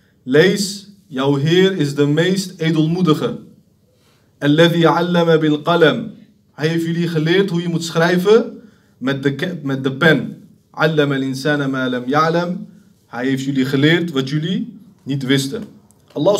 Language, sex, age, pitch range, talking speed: Dutch, male, 30-49, 155-215 Hz, 115 wpm